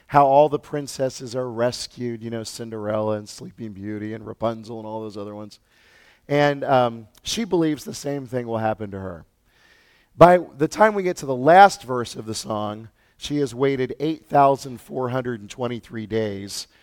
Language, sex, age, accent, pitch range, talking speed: English, male, 40-59, American, 110-150 Hz, 170 wpm